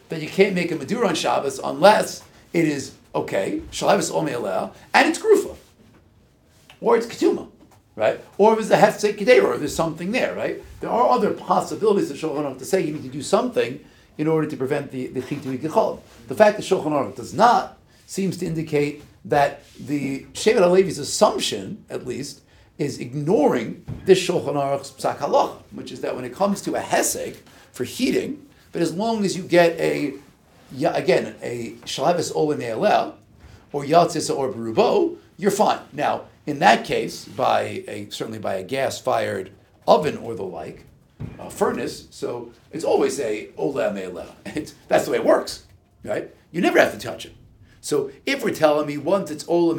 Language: English